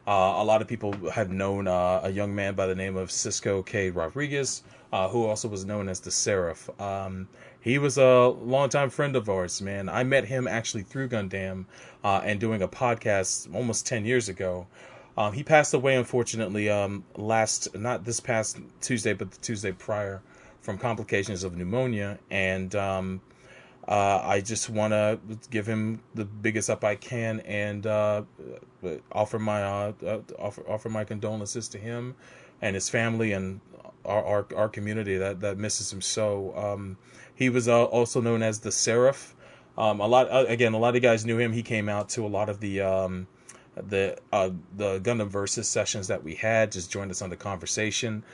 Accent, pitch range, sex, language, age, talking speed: American, 95-120 Hz, male, English, 30-49, 185 wpm